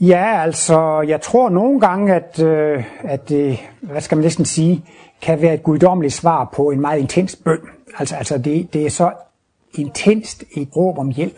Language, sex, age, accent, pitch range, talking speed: Danish, male, 60-79, native, 140-180 Hz, 190 wpm